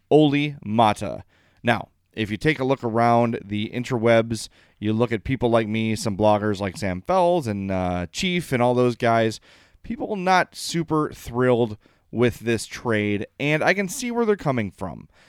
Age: 30-49